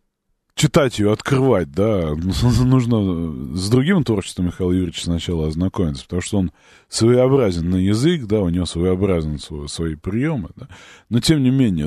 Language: Russian